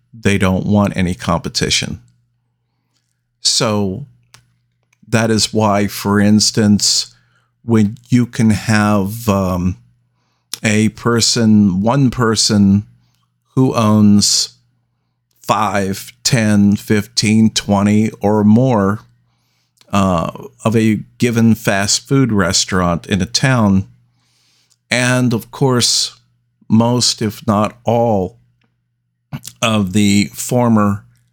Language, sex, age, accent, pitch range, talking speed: English, male, 50-69, American, 100-120 Hz, 90 wpm